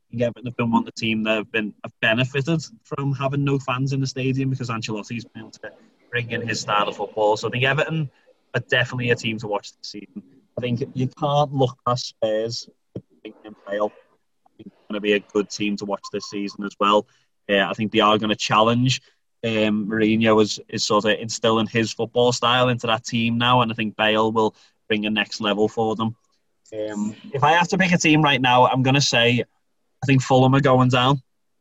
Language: English